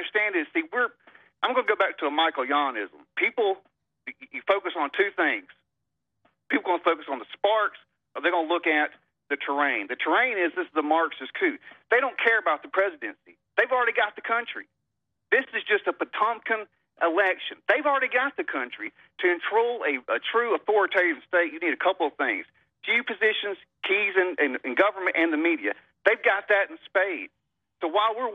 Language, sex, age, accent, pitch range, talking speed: English, male, 40-59, American, 170-270 Hz, 195 wpm